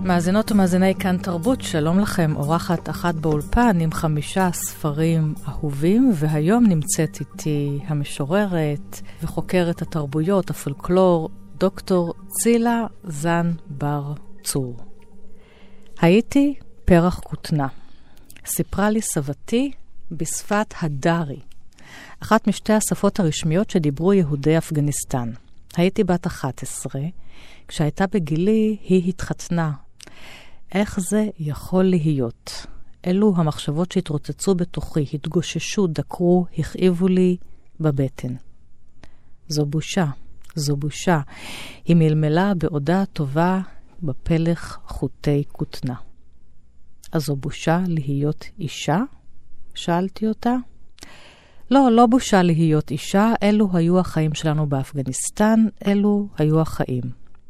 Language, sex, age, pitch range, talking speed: Hebrew, female, 40-59, 150-195 Hz, 95 wpm